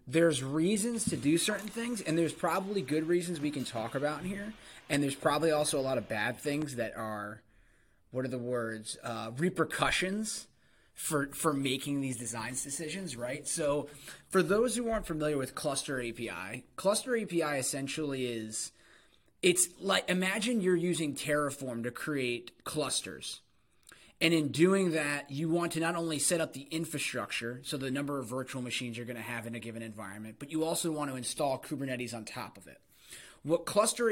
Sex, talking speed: male, 185 wpm